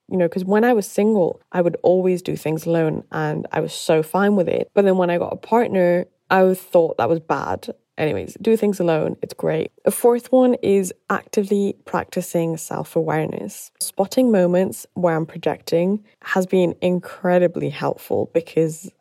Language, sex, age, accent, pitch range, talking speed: English, female, 10-29, British, 165-200 Hz, 175 wpm